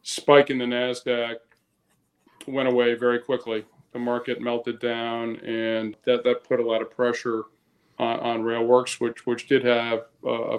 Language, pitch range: English, 110-120 Hz